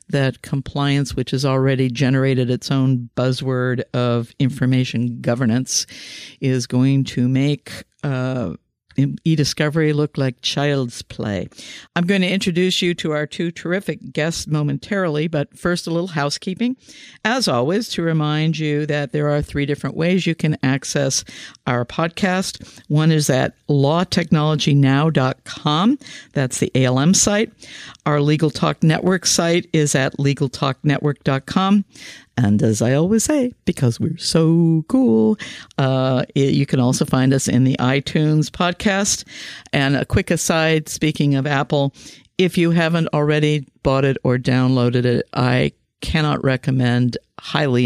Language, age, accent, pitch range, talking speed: English, 50-69, American, 125-165 Hz, 135 wpm